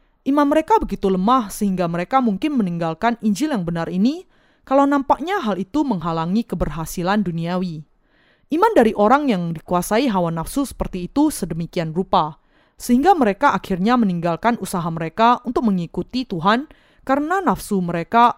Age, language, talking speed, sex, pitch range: 20-39, Indonesian, 135 wpm, female, 175-245 Hz